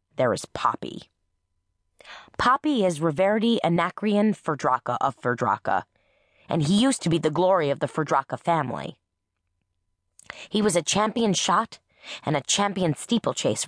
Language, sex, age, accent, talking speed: English, female, 20-39, American, 130 wpm